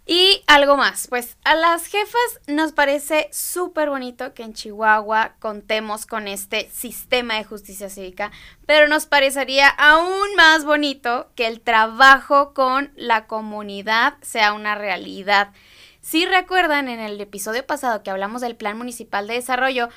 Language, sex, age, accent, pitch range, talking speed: Spanish, female, 20-39, Mexican, 235-290 Hz, 145 wpm